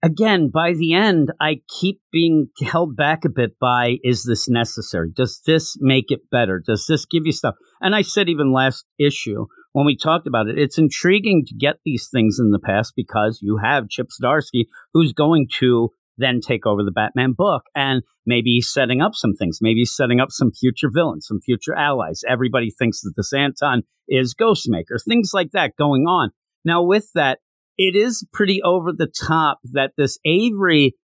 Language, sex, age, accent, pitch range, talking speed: English, male, 50-69, American, 120-165 Hz, 190 wpm